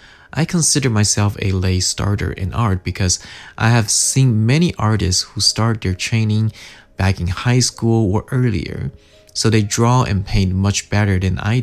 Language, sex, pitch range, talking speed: English, male, 95-125 Hz, 170 wpm